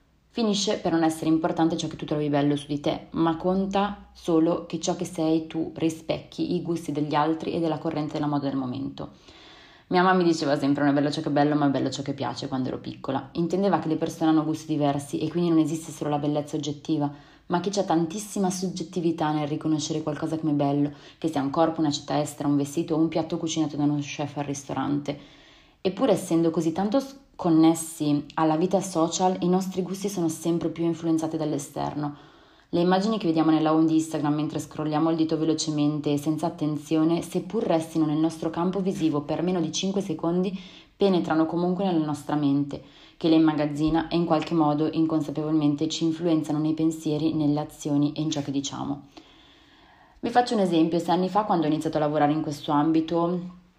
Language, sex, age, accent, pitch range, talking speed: Italian, female, 20-39, native, 150-170 Hz, 200 wpm